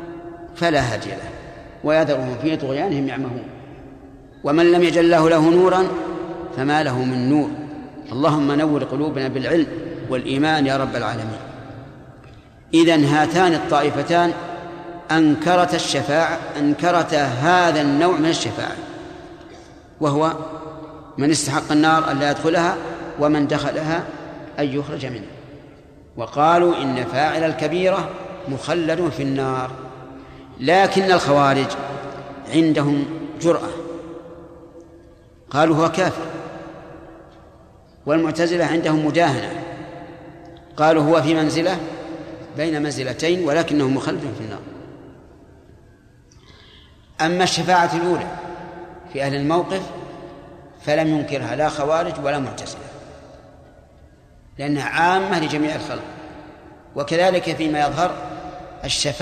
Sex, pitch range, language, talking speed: male, 145-170 Hz, Arabic, 95 wpm